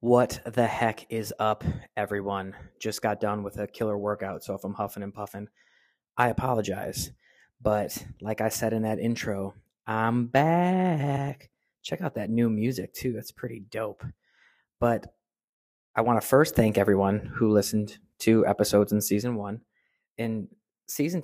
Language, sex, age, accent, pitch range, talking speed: English, male, 20-39, American, 100-115 Hz, 155 wpm